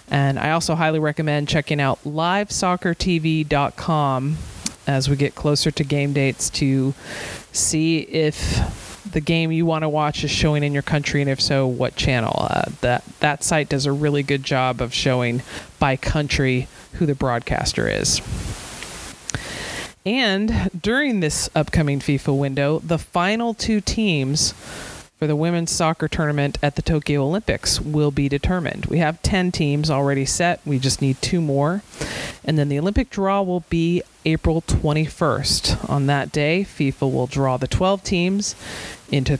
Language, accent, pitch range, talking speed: English, American, 140-170 Hz, 155 wpm